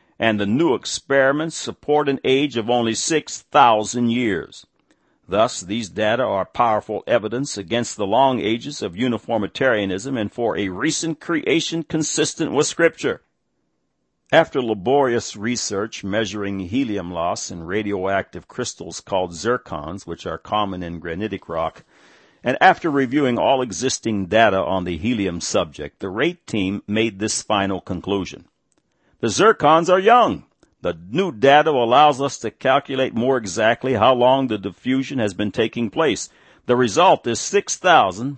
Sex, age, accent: male, 60-79, American